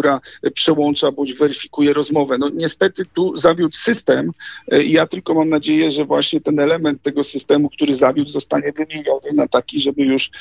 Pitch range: 140-155 Hz